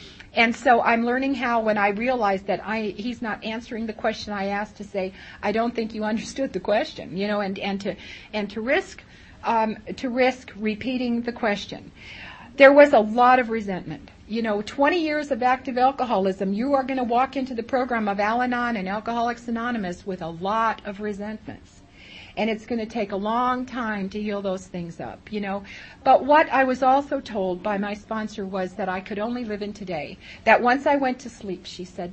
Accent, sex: American, female